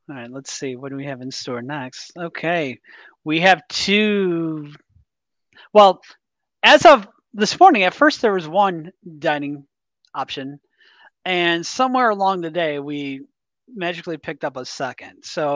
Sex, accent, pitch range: male, American, 140-180 Hz